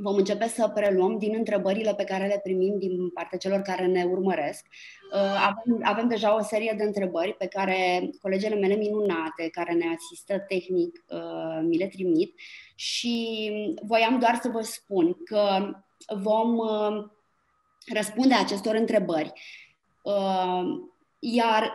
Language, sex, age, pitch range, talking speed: Romanian, female, 20-39, 205-265 Hz, 130 wpm